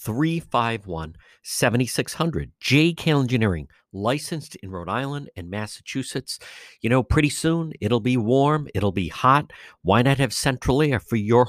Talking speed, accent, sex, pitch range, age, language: 140 wpm, American, male, 110-145 Hz, 50-69, English